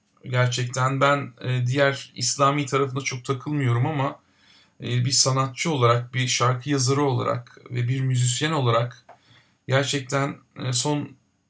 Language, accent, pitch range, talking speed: Turkish, native, 125-140 Hz, 110 wpm